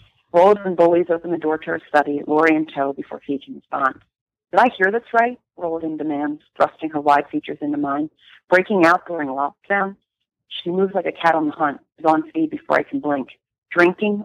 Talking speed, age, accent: 200 wpm, 40-59, American